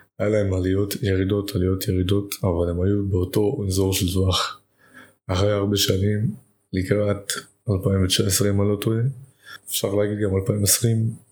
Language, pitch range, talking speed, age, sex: Hebrew, 95-105 Hz, 135 wpm, 20-39, male